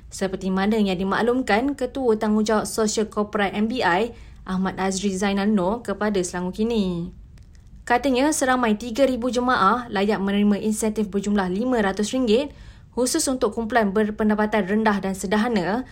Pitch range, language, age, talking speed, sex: 190-230 Hz, Malay, 20-39, 120 wpm, female